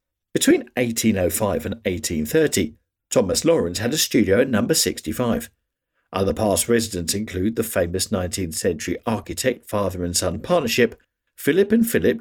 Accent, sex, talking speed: British, male, 135 wpm